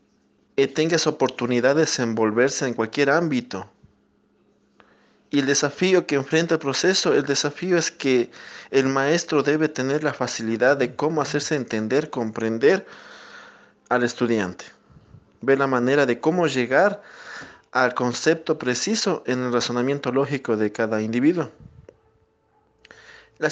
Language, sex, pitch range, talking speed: Spanish, male, 125-160 Hz, 130 wpm